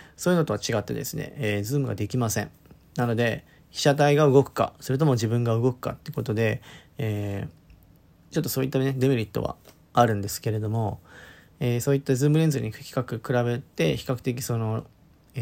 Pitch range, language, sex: 110-140 Hz, Japanese, male